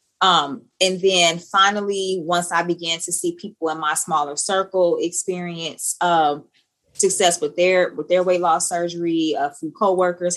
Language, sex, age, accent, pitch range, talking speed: English, female, 20-39, American, 165-185 Hz, 155 wpm